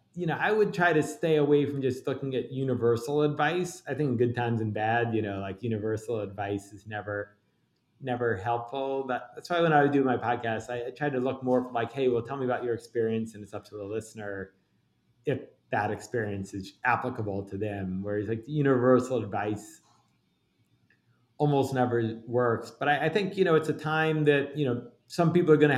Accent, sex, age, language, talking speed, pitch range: American, male, 30-49, English, 210 wpm, 105-130 Hz